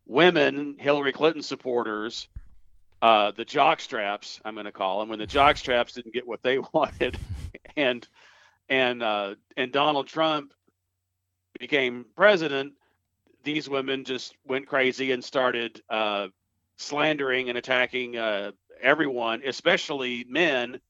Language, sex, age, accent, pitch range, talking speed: English, male, 40-59, American, 100-135 Hz, 125 wpm